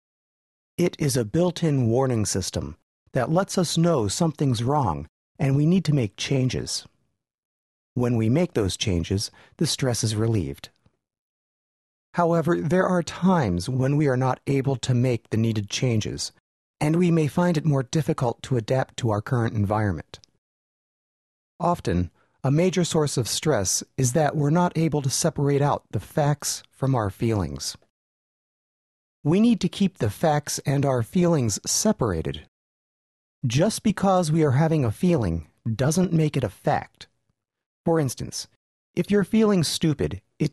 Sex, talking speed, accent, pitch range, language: male, 150 wpm, American, 115-170 Hz, English